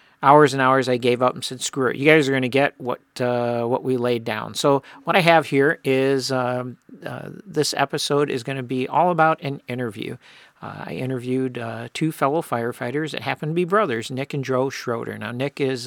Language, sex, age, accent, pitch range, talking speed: English, male, 50-69, American, 120-150 Hz, 225 wpm